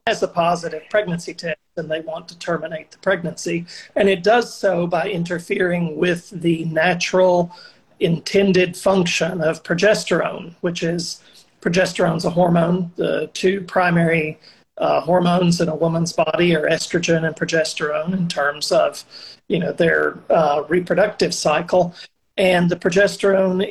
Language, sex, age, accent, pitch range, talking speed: English, male, 40-59, American, 165-185 Hz, 140 wpm